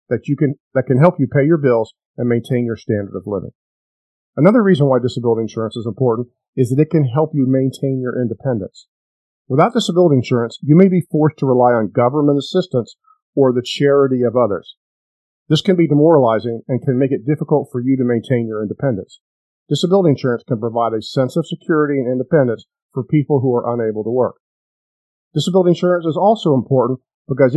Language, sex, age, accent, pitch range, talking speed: English, male, 50-69, American, 120-150 Hz, 190 wpm